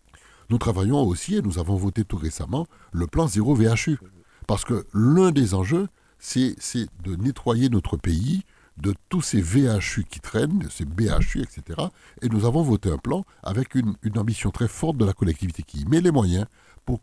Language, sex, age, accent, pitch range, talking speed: French, male, 60-79, French, 90-120 Hz, 195 wpm